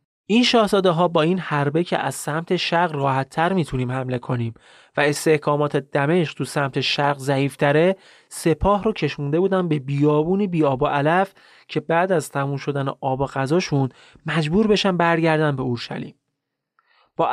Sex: male